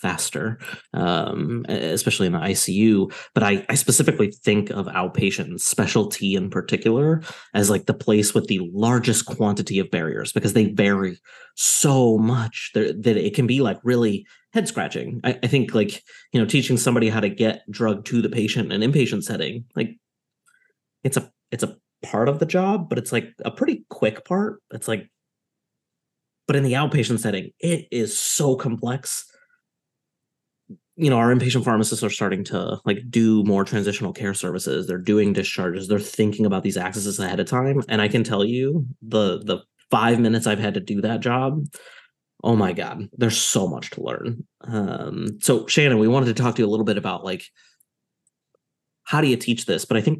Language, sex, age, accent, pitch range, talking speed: English, male, 30-49, American, 105-130 Hz, 185 wpm